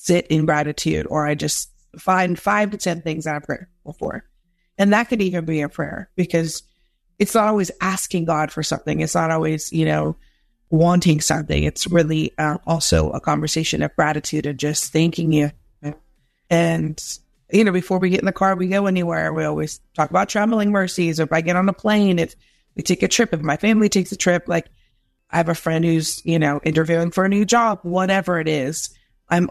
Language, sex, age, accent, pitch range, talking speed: English, female, 30-49, American, 150-175 Hz, 205 wpm